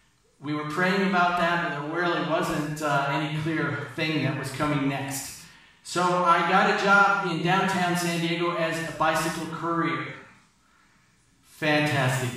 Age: 50-69